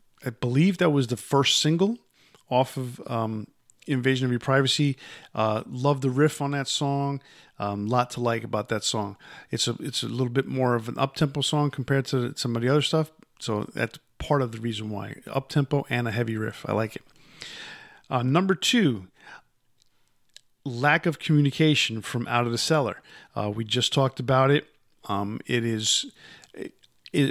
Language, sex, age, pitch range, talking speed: English, male, 50-69, 115-145 Hz, 180 wpm